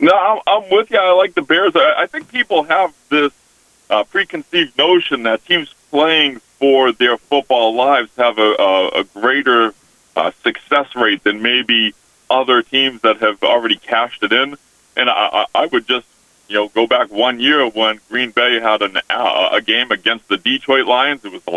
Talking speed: 165 wpm